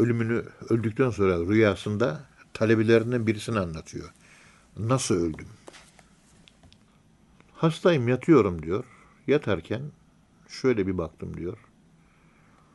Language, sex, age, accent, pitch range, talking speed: Turkish, male, 60-79, native, 95-130 Hz, 80 wpm